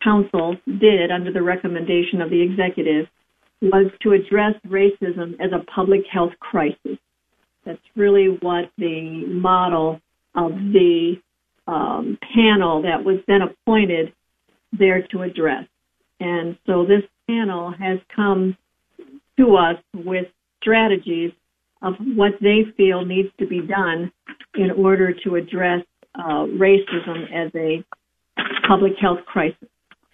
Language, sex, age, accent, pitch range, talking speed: English, female, 50-69, American, 175-205 Hz, 125 wpm